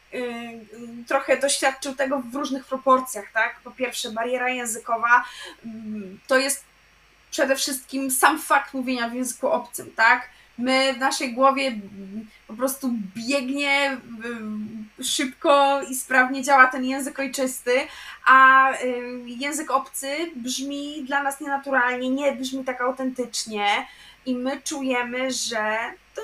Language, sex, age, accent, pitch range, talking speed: Polish, female, 20-39, native, 245-280 Hz, 120 wpm